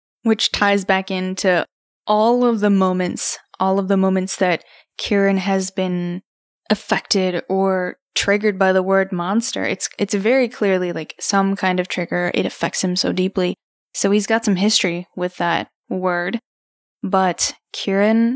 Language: English